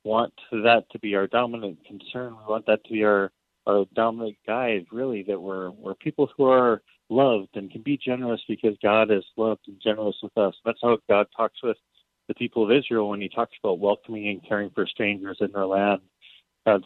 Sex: male